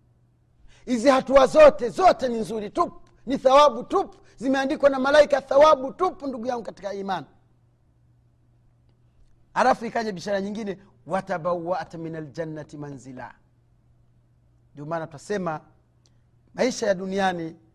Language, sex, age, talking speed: Swahili, male, 40-59, 115 wpm